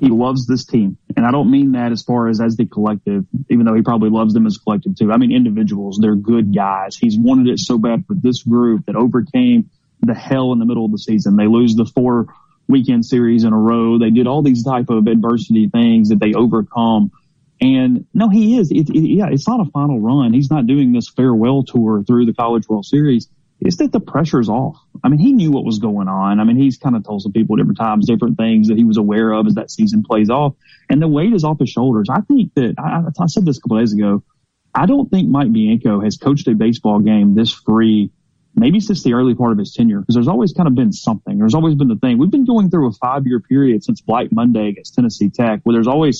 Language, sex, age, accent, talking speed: English, male, 30-49, American, 250 wpm